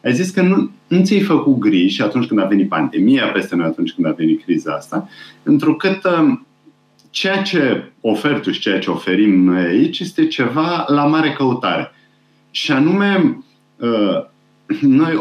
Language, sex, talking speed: Romanian, male, 155 wpm